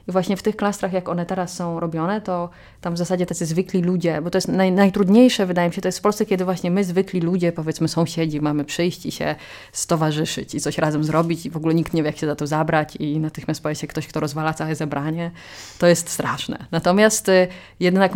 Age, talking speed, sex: 20-39, 230 wpm, female